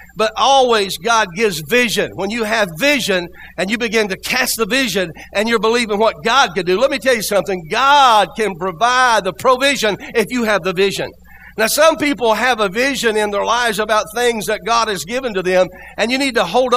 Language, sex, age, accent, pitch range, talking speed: English, male, 60-79, American, 195-235 Hz, 215 wpm